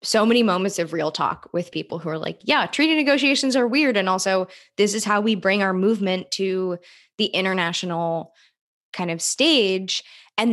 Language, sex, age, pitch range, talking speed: English, female, 20-39, 170-205 Hz, 180 wpm